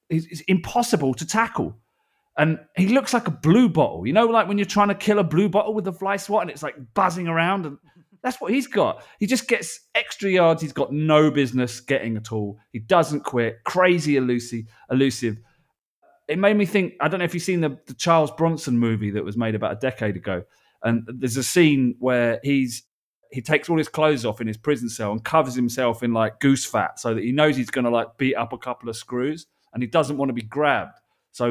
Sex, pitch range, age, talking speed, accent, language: male, 125-170 Hz, 30-49, 230 wpm, British, English